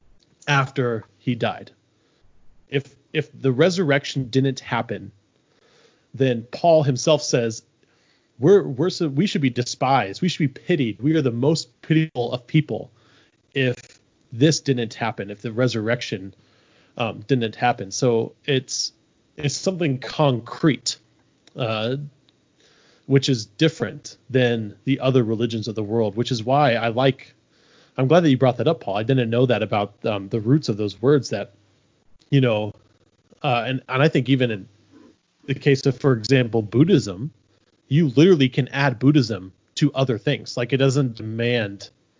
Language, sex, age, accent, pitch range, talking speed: English, male, 30-49, American, 110-140 Hz, 155 wpm